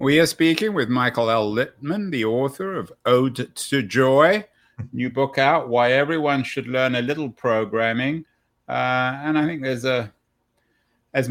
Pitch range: 100-130 Hz